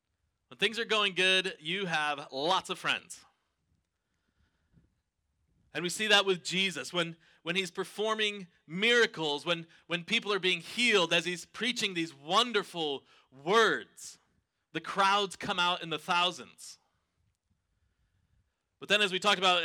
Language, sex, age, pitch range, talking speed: English, male, 30-49, 150-195 Hz, 140 wpm